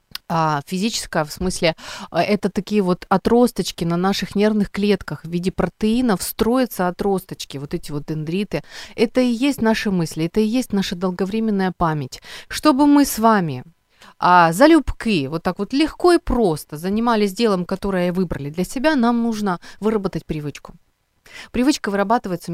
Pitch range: 170-220 Hz